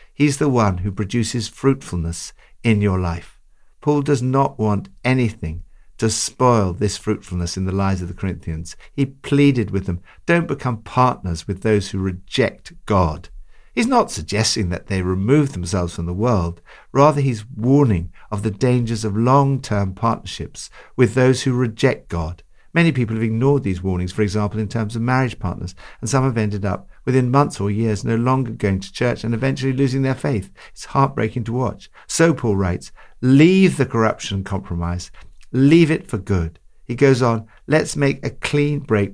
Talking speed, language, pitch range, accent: 175 wpm, English, 95-130 Hz, British